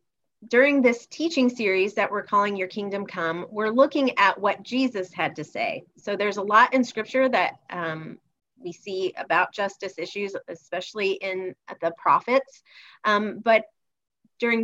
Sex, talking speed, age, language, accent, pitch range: female, 155 wpm, 30-49, English, American, 180-225 Hz